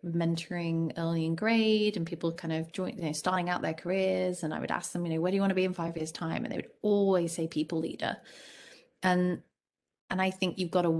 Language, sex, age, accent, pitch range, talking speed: English, female, 20-39, British, 165-210 Hz, 250 wpm